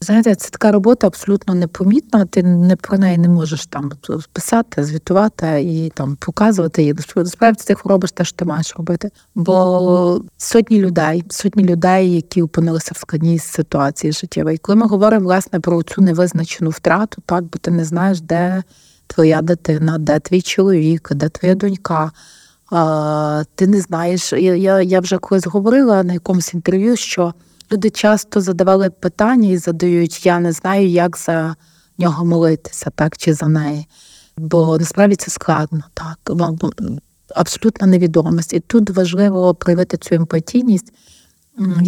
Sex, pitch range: female, 160-190 Hz